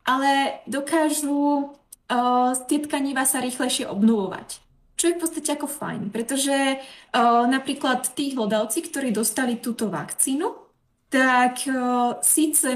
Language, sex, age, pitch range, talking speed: Czech, female, 20-39, 220-295 Hz, 120 wpm